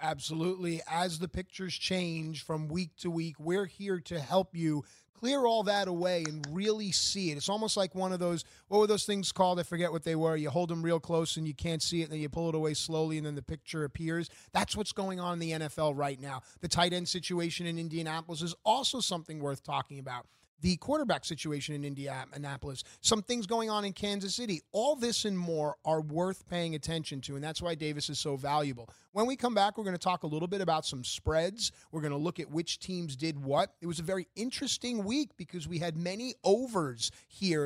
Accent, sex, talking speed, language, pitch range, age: American, male, 230 wpm, English, 155-195 Hz, 30-49